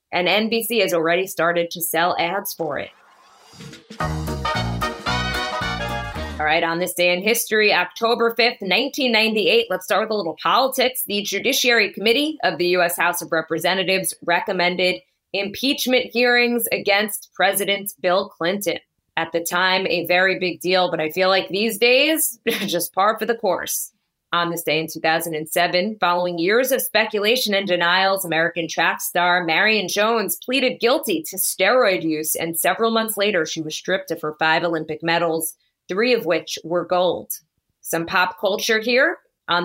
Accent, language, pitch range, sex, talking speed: American, English, 170-215 Hz, female, 155 wpm